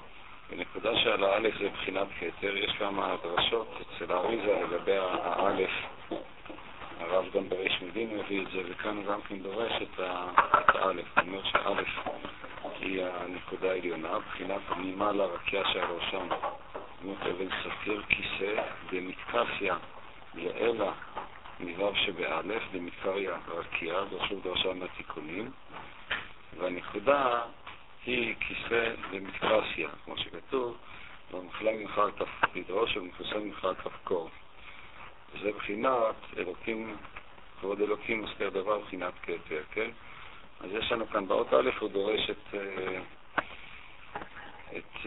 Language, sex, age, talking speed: Hebrew, male, 50-69, 110 wpm